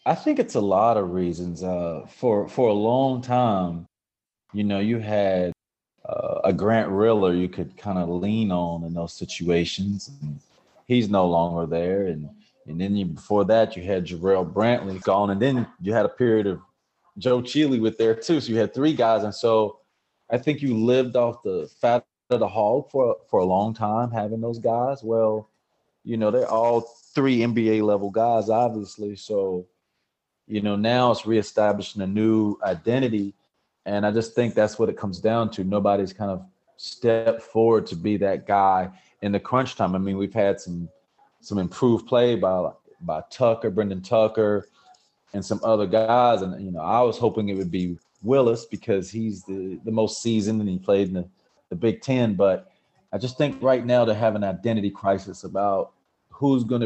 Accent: American